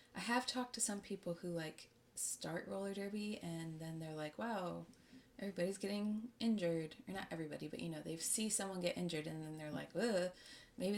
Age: 20-39